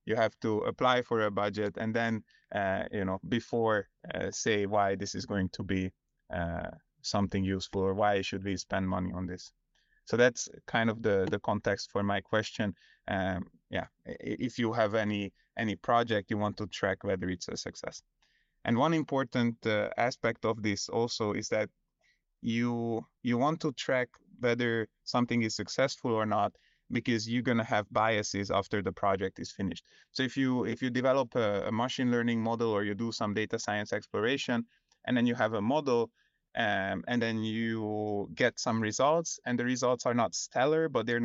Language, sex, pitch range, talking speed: English, male, 105-125 Hz, 190 wpm